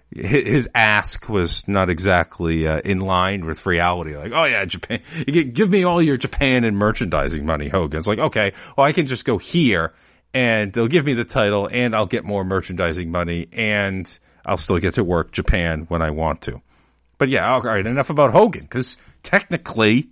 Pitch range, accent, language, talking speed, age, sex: 90-125 Hz, American, English, 195 wpm, 40-59, male